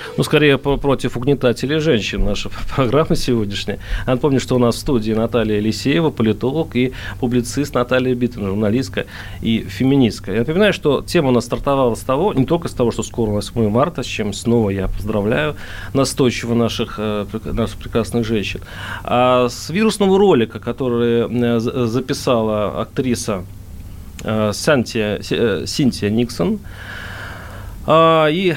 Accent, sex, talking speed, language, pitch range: native, male, 145 wpm, Russian, 105-130 Hz